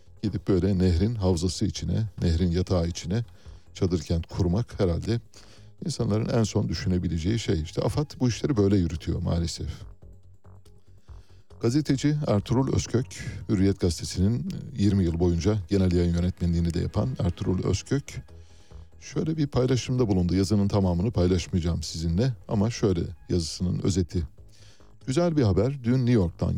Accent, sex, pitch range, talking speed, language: native, male, 90-110 Hz, 125 wpm, Turkish